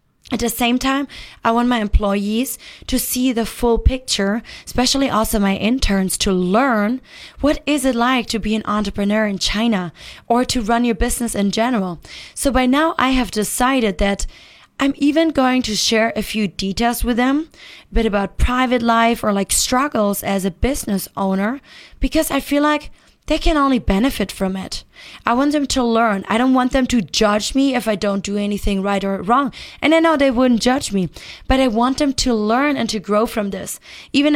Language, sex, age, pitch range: Chinese, female, 20-39, 210-255 Hz